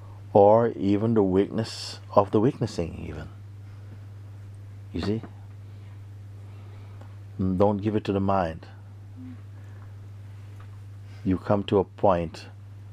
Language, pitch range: English, 95-100 Hz